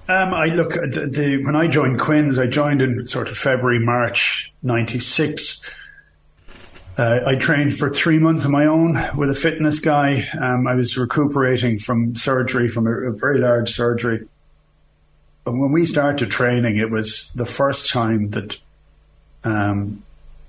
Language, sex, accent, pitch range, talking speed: English, male, Irish, 110-135 Hz, 160 wpm